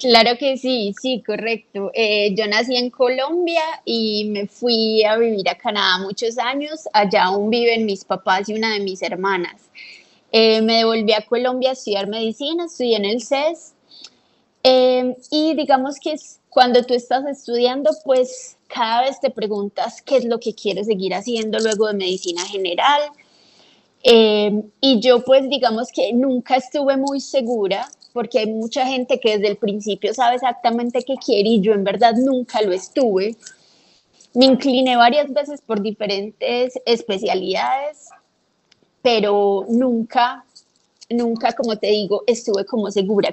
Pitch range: 215-260 Hz